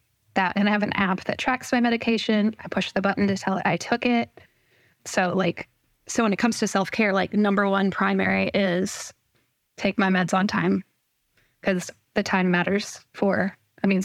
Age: 10-29